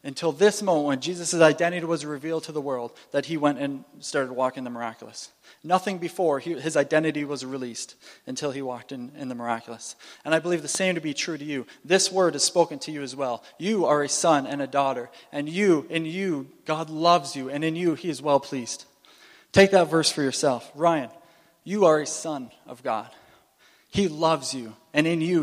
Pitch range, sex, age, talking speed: 135-170 Hz, male, 20-39, 215 wpm